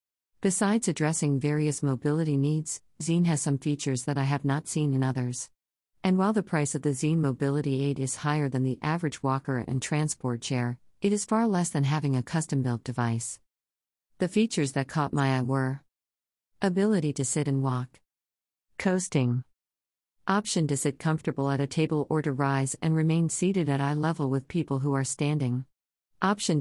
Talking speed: 175 wpm